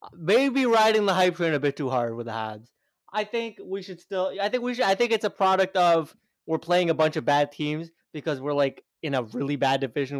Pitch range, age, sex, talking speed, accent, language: 145-200 Hz, 20-39, male, 245 wpm, American, English